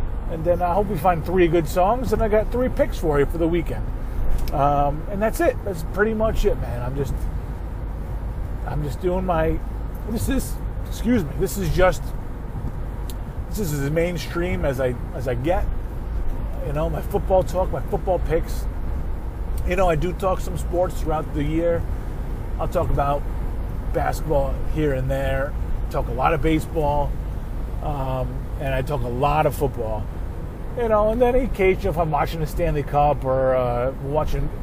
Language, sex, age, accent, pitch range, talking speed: English, male, 30-49, American, 125-180 Hz, 175 wpm